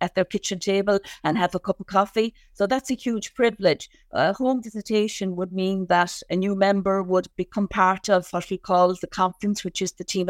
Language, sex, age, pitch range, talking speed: English, female, 50-69, 180-200 Hz, 215 wpm